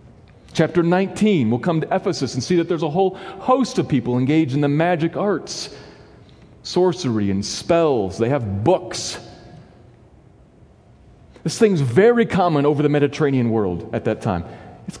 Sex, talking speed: male, 150 wpm